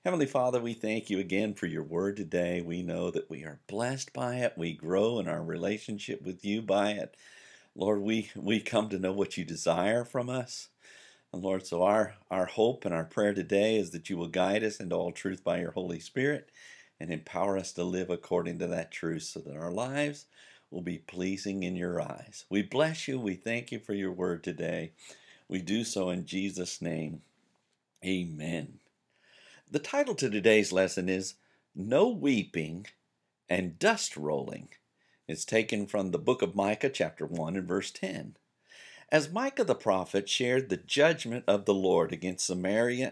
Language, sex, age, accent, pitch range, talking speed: English, male, 50-69, American, 95-125 Hz, 185 wpm